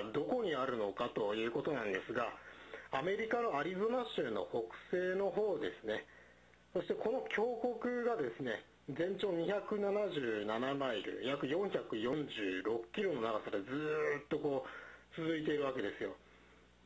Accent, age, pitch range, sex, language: native, 40-59, 150-230 Hz, male, Japanese